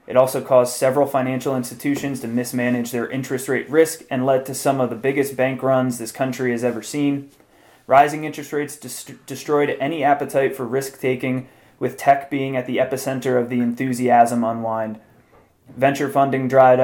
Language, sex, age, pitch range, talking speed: English, male, 20-39, 120-135 Hz, 170 wpm